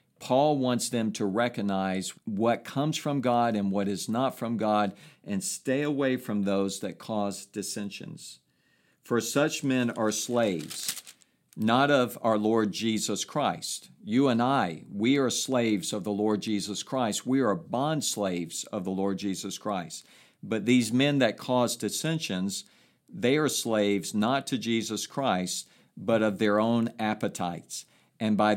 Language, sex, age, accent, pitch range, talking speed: English, male, 50-69, American, 105-130 Hz, 155 wpm